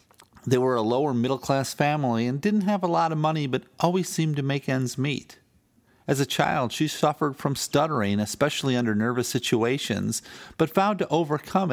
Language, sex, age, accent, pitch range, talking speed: English, male, 50-69, American, 125-185 Hz, 175 wpm